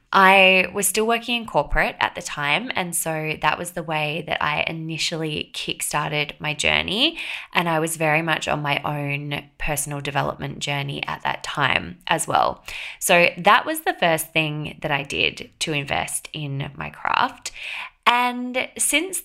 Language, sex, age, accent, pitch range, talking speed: English, female, 20-39, Australian, 150-195 Hz, 165 wpm